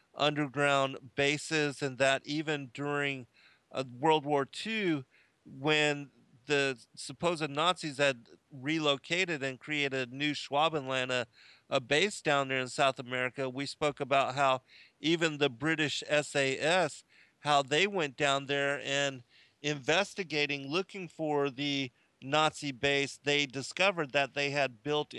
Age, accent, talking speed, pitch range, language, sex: 50-69, American, 125 wpm, 135-150 Hz, English, male